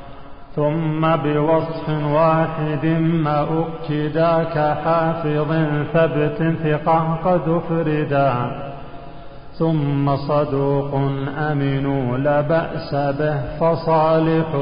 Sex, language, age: male, Arabic, 40-59